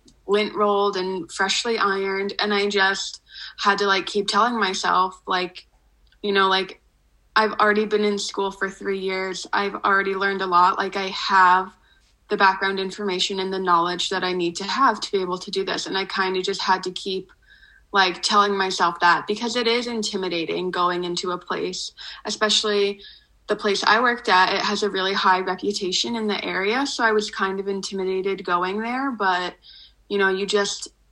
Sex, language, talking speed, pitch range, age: female, English, 190 wpm, 190-210 Hz, 20-39